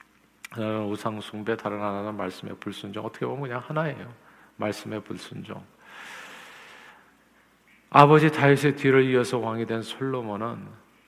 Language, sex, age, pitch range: Korean, male, 50-69, 110-130 Hz